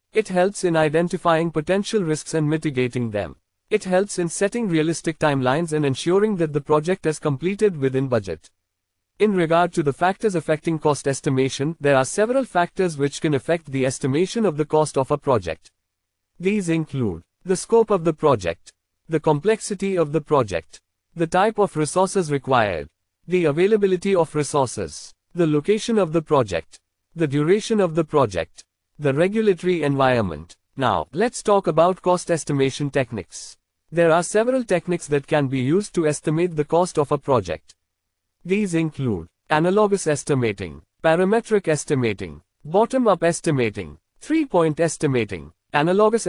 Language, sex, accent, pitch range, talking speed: English, male, Indian, 140-180 Hz, 150 wpm